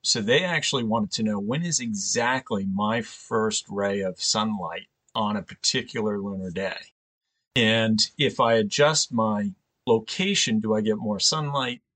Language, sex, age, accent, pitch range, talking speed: English, male, 40-59, American, 105-150 Hz, 150 wpm